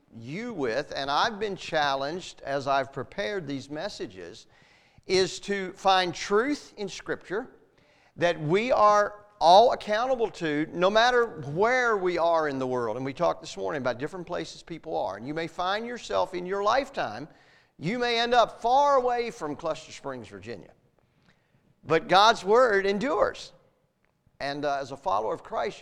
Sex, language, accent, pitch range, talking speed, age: male, English, American, 155-235 Hz, 165 wpm, 50-69